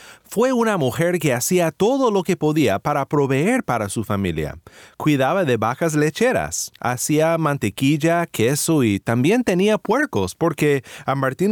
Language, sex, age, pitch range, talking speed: Spanish, male, 30-49, 120-185 Hz, 145 wpm